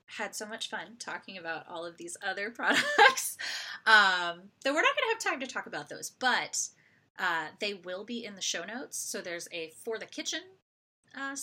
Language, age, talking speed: English, 30-49, 205 wpm